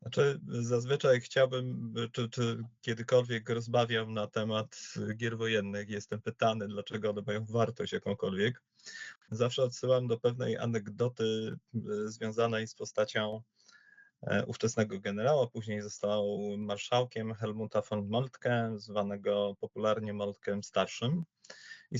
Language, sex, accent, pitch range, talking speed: Polish, male, native, 105-120 Hz, 105 wpm